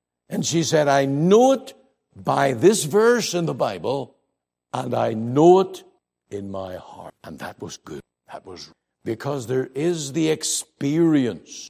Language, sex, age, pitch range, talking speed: English, male, 60-79, 105-155 Hz, 155 wpm